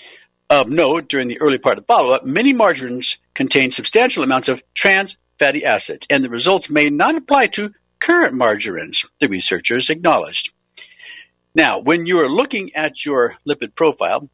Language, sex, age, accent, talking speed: English, male, 60-79, American, 165 wpm